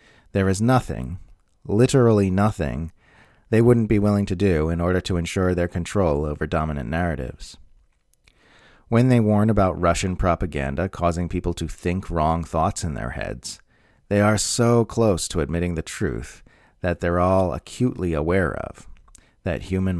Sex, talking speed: male, 155 wpm